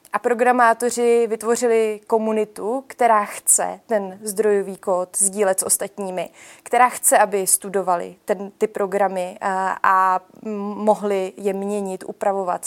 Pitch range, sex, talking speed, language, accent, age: 200-235 Hz, female, 120 wpm, Czech, native, 20-39